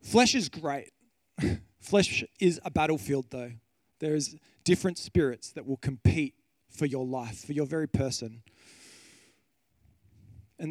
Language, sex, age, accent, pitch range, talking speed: English, male, 20-39, Australian, 140-180 Hz, 130 wpm